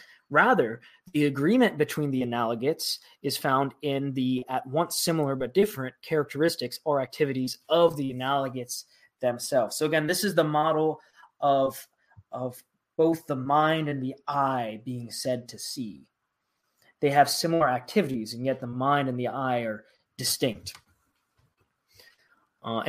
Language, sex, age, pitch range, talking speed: English, male, 20-39, 130-155 Hz, 140 wpm